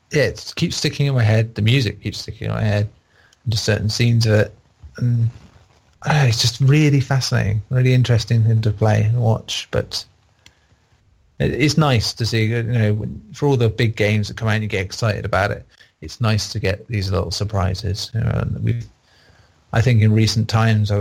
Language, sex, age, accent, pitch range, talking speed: English, male, 30-49, British, 100-115 Hz, 215 wpm